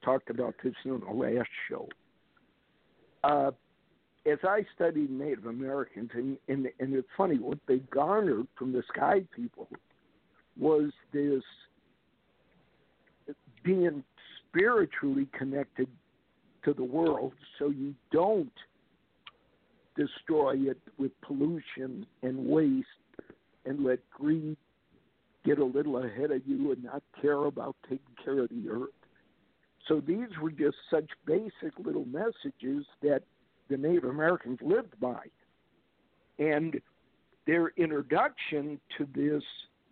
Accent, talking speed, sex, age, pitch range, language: American, 120 wpm, male, 60-79, 130-160 Hz, English